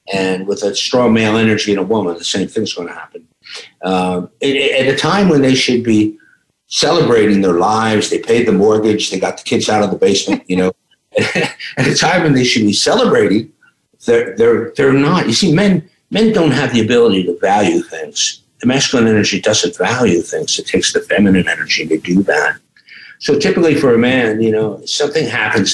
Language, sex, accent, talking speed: English, male, American, 205 wpm